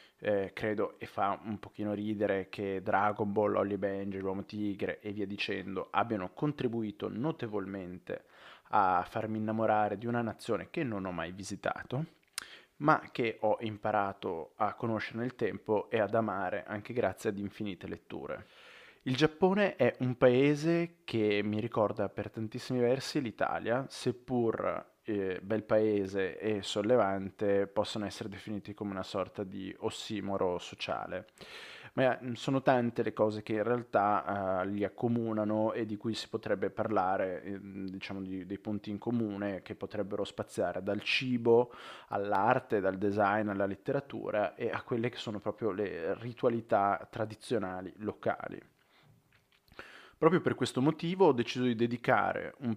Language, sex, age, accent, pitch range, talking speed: Italian, male, 20-39, native, 100-120 Hz, 145 wpm